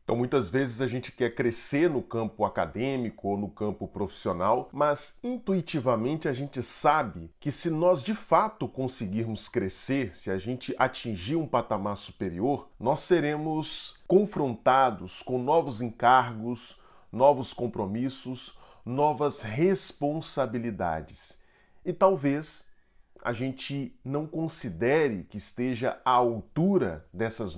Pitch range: 110-145 Hz